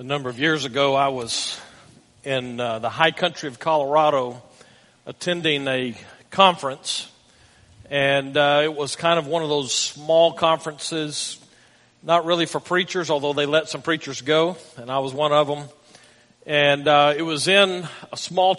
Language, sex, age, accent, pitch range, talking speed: English, male, 50-69, American, 145-175 Hz, 165 wpm